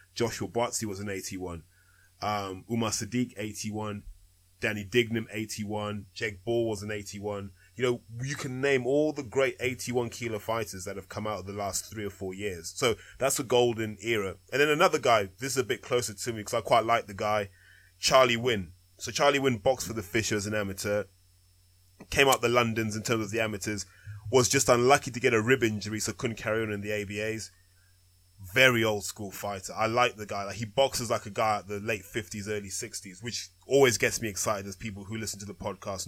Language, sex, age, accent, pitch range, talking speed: English, male, 20-39, British, 100-125 Hz, 215 wpm